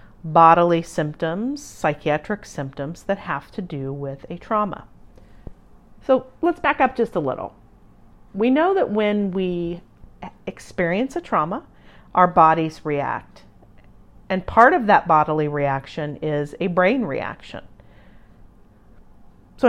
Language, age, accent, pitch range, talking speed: English, 40-59, American, 155-205 Hz, 120 wpm